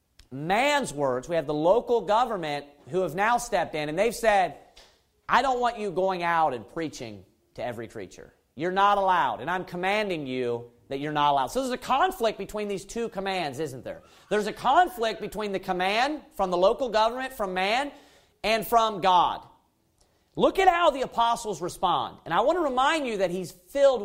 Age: 40-59